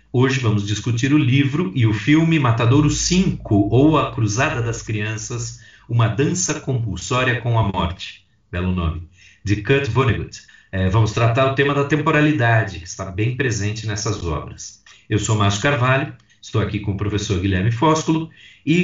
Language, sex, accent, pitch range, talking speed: Portuguese, male, Brazilian, 100-135 Hz, 160 wpm